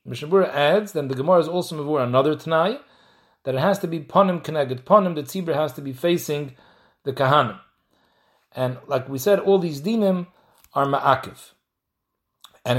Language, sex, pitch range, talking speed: English, male, 130-175 Hz, 165 wpm